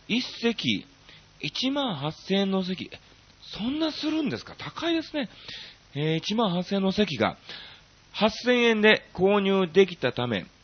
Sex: male